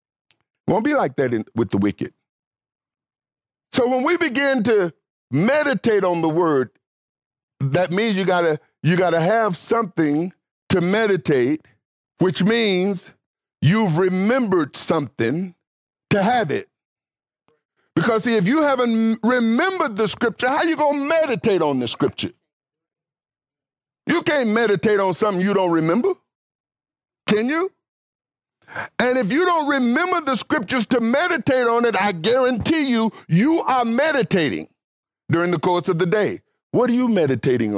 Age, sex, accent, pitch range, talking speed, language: 50-69, male, American, 160-245 Hz, 145 wpm, English